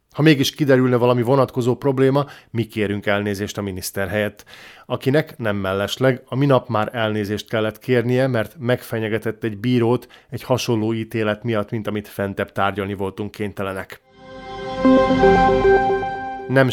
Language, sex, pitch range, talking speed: Hungarian, male, 110-130 Hz, 130 wpm